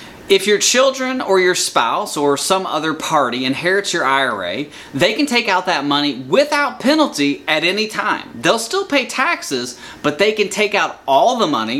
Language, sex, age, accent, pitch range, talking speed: English, male, 30-49, American, 145-210 Hz, 185 wpm